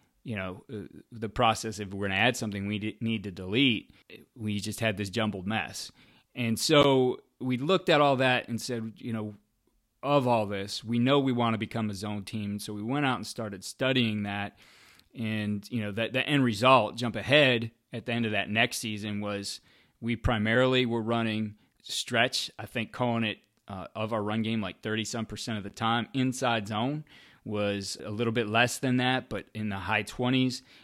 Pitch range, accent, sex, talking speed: 105-120 Hz, American, male, 200 wpm